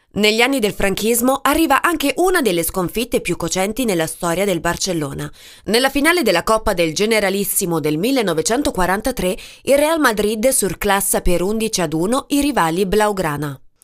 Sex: female